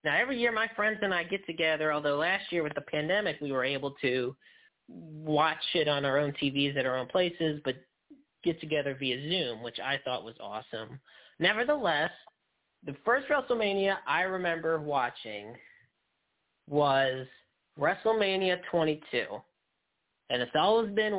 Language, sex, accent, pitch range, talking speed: English, male, American, 150-200 Hz, 150 wpm